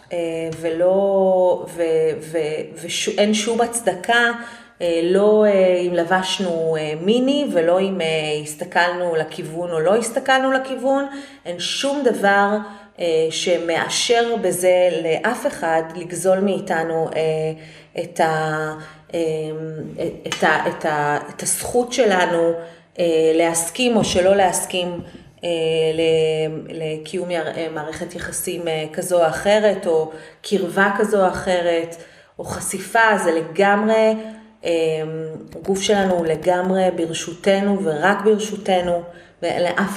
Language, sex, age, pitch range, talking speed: Hebrew, female, 30-49, 165-200 Hz, 90 wpm